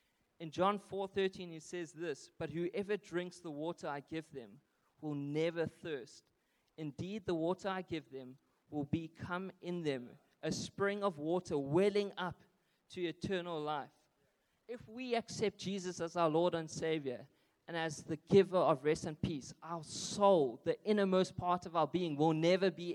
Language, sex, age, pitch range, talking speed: English, male, 20-39, 155-190 Hz, 165 wpm